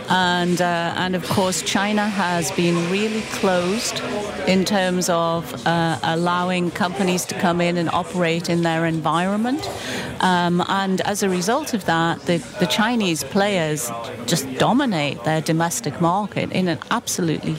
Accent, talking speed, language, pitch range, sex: British, 145 wpm, English, 165-195 Hz, female